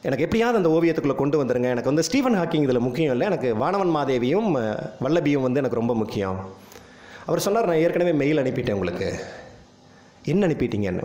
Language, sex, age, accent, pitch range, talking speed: Tamil, male, 30-49, native, 130-195 Hz, 165 wpm